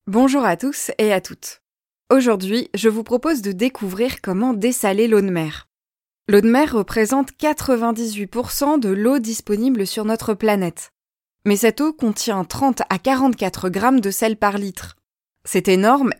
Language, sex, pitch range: French, female, 195-245 Hz